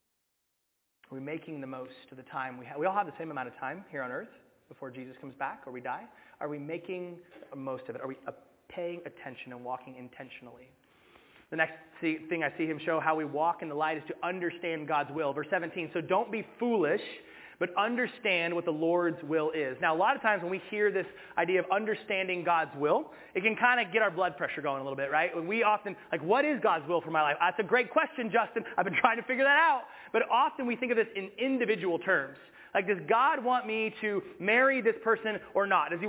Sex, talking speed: male, 240 wpm